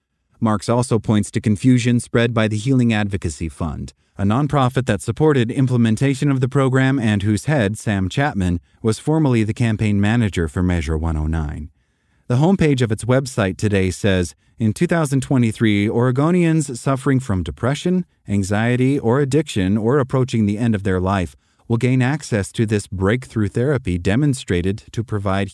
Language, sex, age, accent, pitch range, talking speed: English, male, 30-49, American, 95-130 Hz, 155 wpm